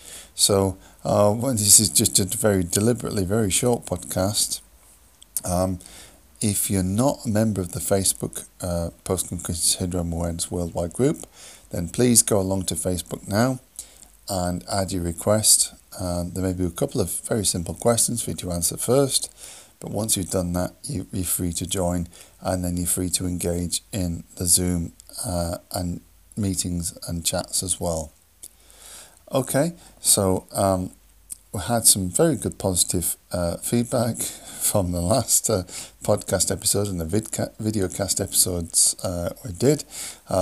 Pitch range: 85-105 Hz